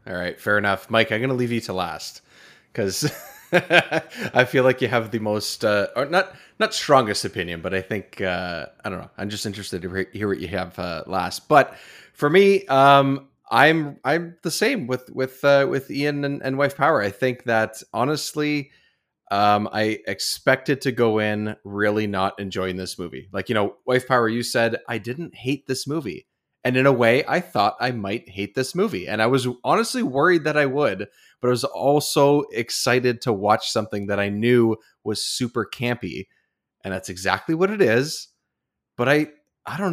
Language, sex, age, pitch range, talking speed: English, male, 30-49, 105-145 Hz, 195 wpm